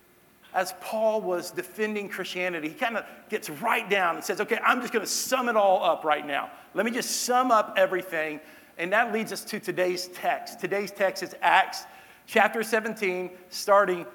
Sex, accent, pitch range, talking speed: male, American, 165-205 Hz, 185 wpm